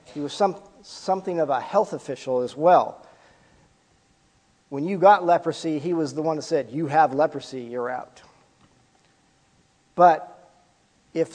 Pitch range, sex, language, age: 120-150 Hz, male, English, 50-69